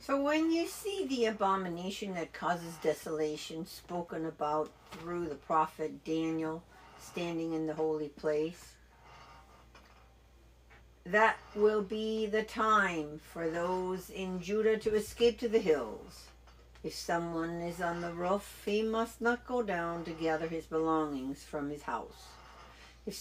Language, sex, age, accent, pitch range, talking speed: English, female, 60-79, American, 155-195 Hz, 135 wpm